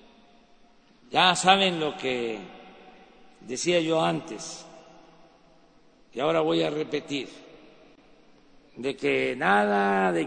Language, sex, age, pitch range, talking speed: Spanish, male, 60-79, 150-210 Hz, 95 wpm